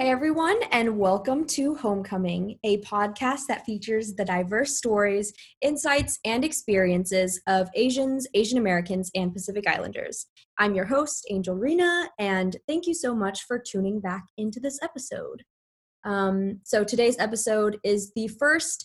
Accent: American